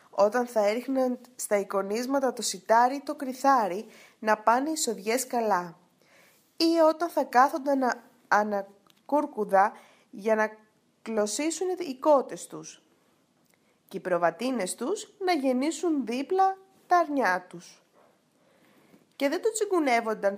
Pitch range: 195-265 Hz